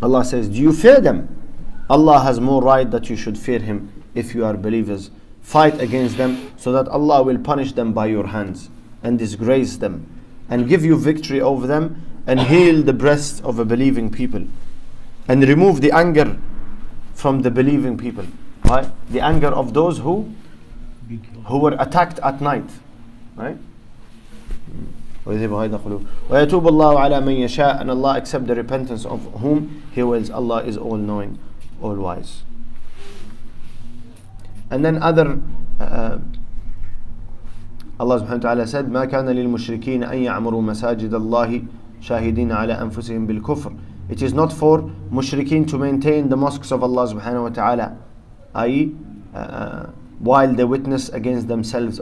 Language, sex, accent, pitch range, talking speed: English, male, Lebanese, 110-135 Hz, 145 wpm